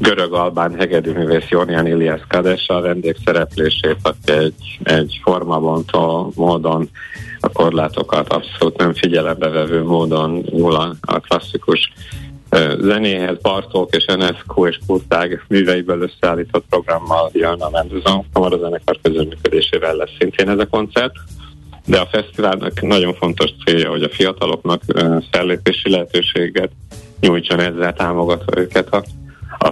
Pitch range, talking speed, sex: 80-95 Hz, 120 wpm, male